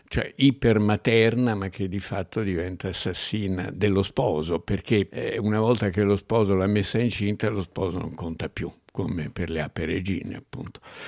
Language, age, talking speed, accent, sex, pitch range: Italian, 60-79, 175 wpm, native, male, 95-115 Hz